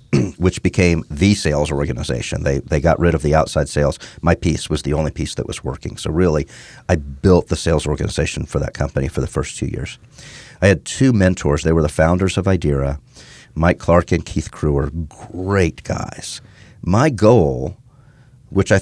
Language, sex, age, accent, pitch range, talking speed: English, male, 50-69, American, 80-110 Hz, 185 wpm